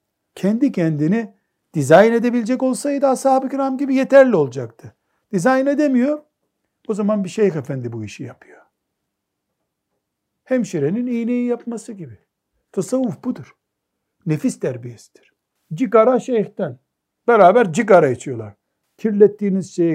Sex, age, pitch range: male, 60-79, 155-240 Hz